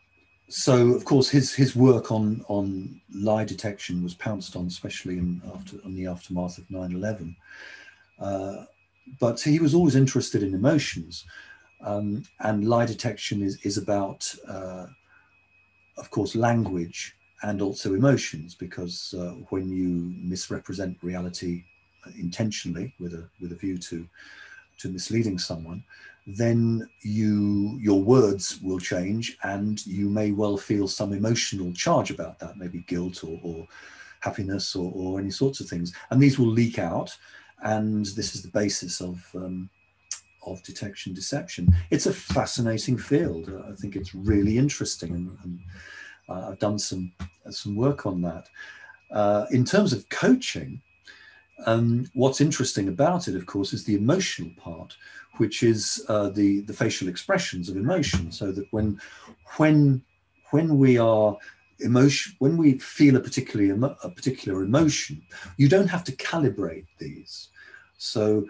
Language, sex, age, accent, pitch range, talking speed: English, male, 40-59, British, 90-120 Hz, 150 wpm